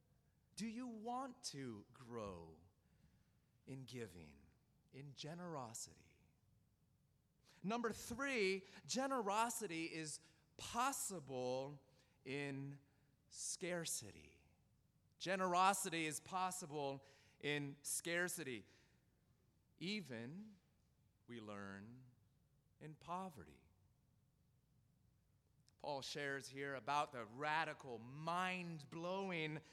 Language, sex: English, male